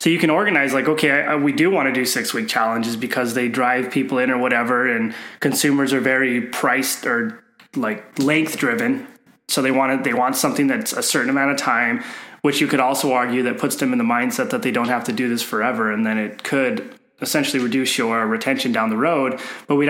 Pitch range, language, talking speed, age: 120-145 Hz, English, 230 wpm, 20-39